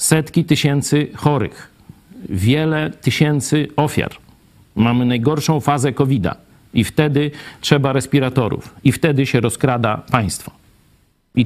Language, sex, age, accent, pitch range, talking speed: Polish, male, 50-69, native, 130-190 Hz, 105 wpm